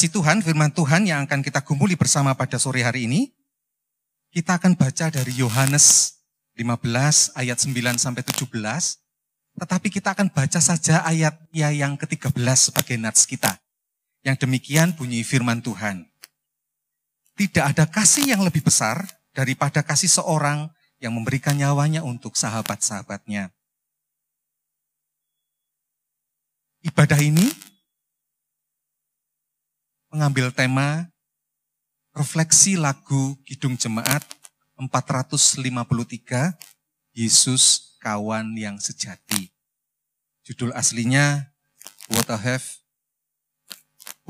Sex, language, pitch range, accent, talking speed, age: male, Indonesian, 125-160 Hz, native, 95 wpm, 30-49